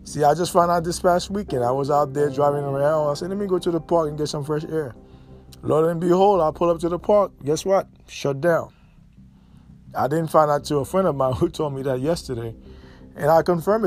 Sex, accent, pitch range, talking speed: male, American, 145-195 Hz, 245 wpm